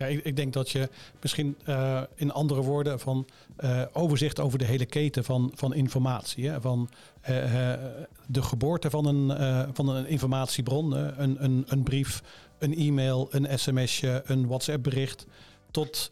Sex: male